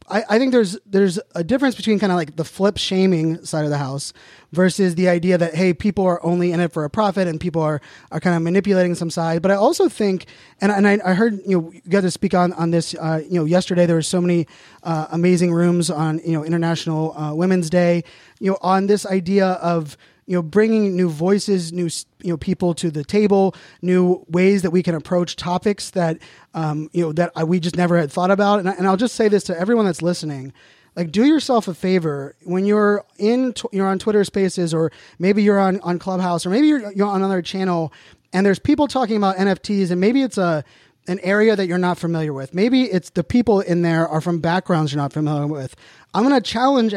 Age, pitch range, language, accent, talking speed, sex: 20-39, 170-200 Hz, English, American, 235 wpm, male